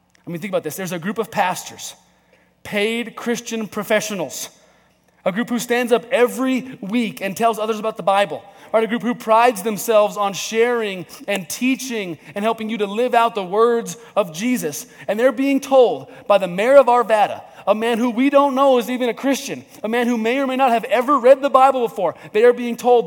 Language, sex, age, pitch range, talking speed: English, male, 30-49, 180-245 Hz, 215 wpm